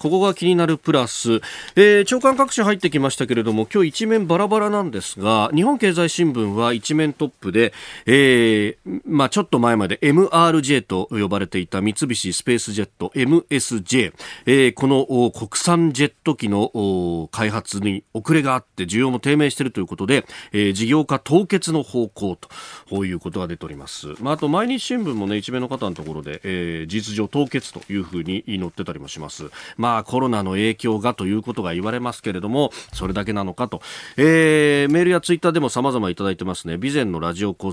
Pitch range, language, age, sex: 100-145 Hz, Japanese, 40-59, male